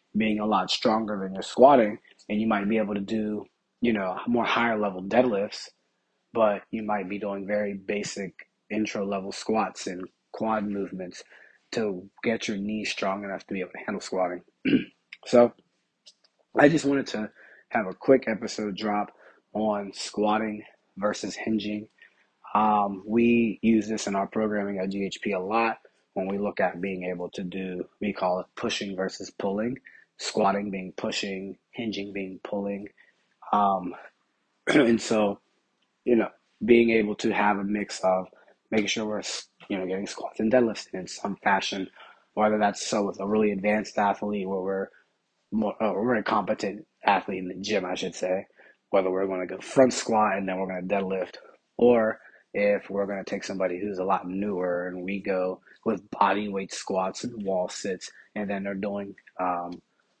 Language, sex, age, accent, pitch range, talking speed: English, male, 20-39, American, 95-110 Hz, 170 wpm